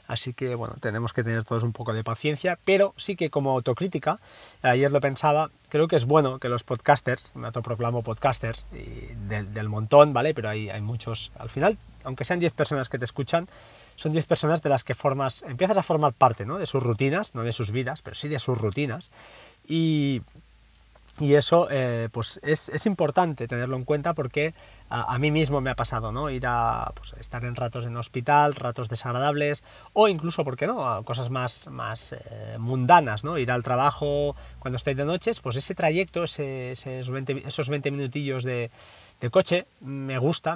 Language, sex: Spanish, male